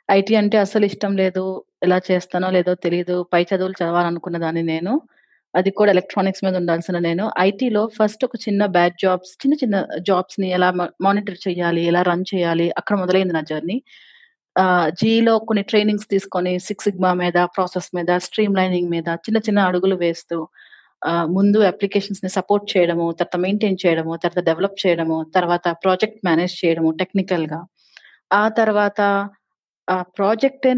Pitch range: 175-210 Hz